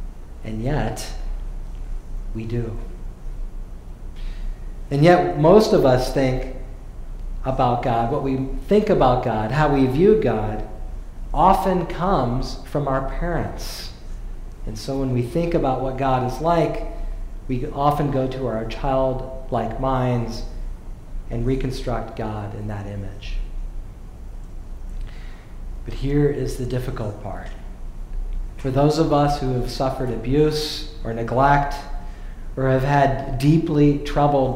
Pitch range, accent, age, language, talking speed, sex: 115-145 Hz, American, 40-59, English, 120 wpm, male